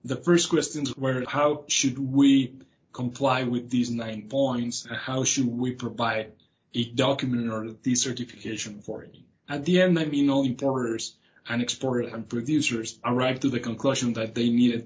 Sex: male